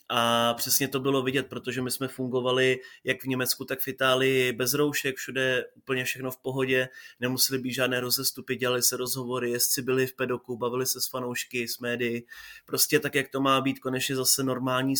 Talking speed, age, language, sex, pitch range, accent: 190 wpm, 20-39, Czech, male, 130-140 Hz, native